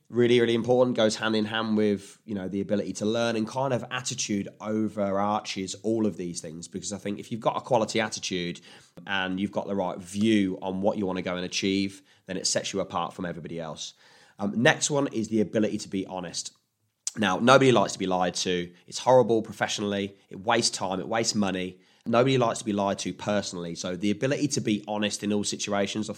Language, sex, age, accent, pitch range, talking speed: English, male, 20-39, British, 95-120 Hz, 220 wpm